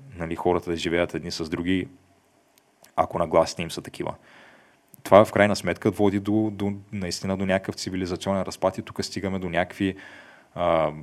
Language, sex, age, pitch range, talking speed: Bulgarian, male, 20-39, 85-100 Hz, 165 wpm